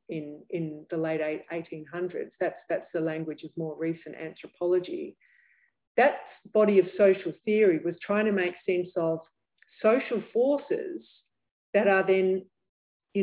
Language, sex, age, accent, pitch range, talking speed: English, female, 40-59, Australian, 180-225 Hz, 135 wpm